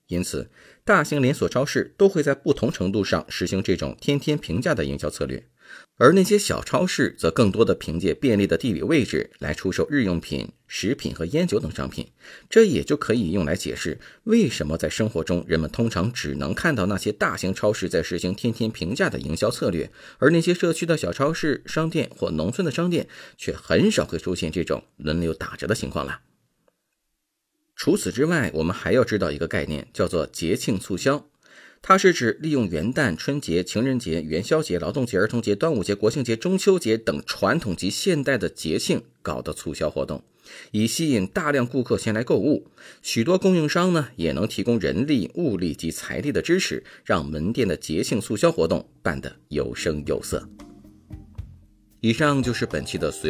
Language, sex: Chinese, male